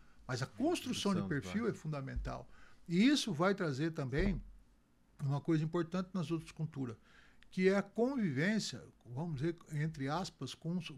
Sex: male